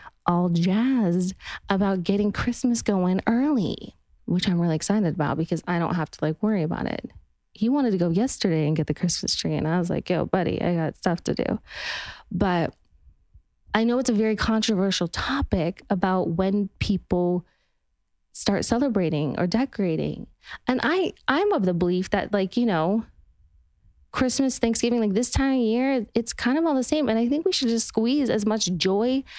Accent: American